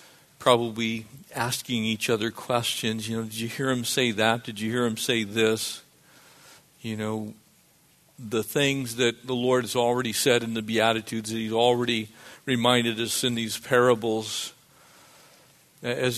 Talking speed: 150 wpm